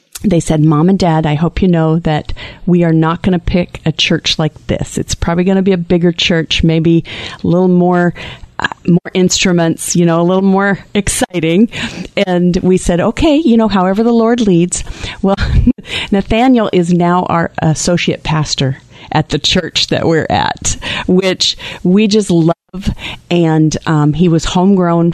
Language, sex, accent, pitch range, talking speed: English, female, American, 160-195 Hz, 175 wpm